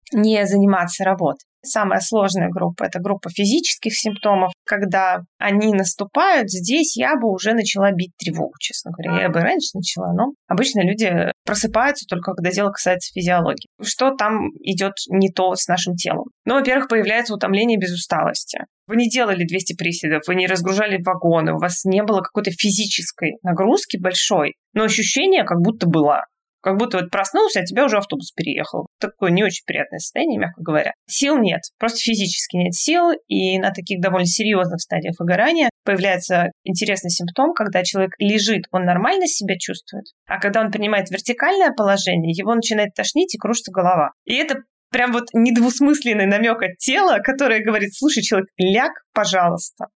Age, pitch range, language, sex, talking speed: 20-39, 185-230 Hz, Russian, female, 165 wpm